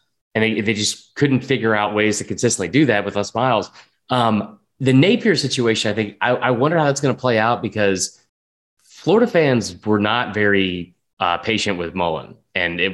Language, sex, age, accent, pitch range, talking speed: English, male, 20-39, American, 100-135 Hz, 195 wpm